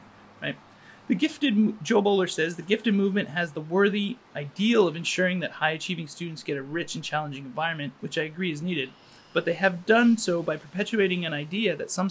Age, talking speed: 30-49, 200 wpm